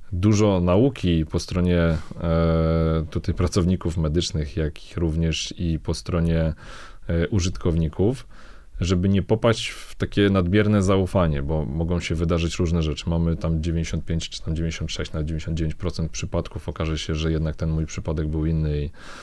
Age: 30-49